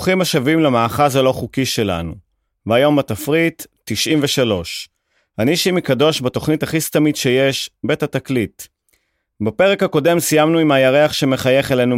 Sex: male